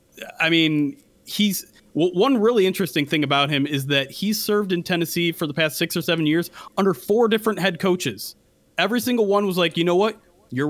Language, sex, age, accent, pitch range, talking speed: English, male, 30-49, American, 135-180 Hz, 200 wpm